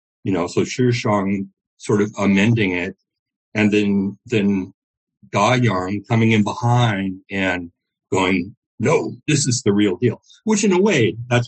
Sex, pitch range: male, 100-125 Hz